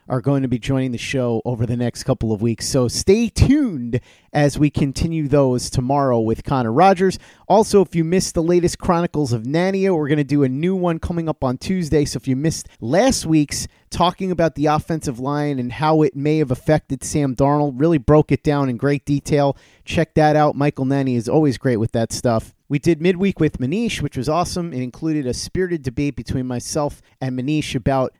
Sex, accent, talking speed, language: male, American, 210 wpm, English